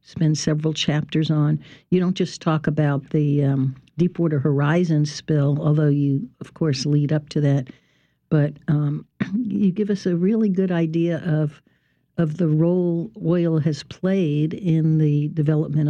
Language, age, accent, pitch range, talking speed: English, 60-79, American, 155-185 Hz, 155 wpm